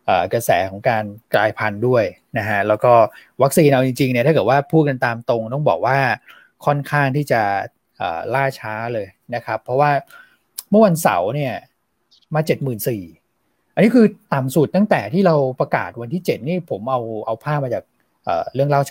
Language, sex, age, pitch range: Thai, male, 20-39, 115-150 Hz